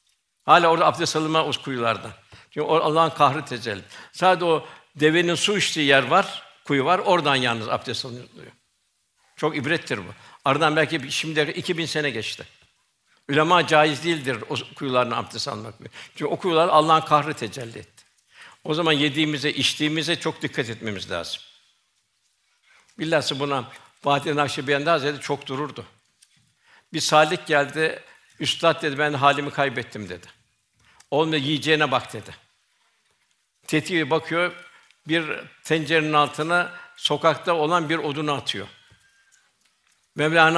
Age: 60-79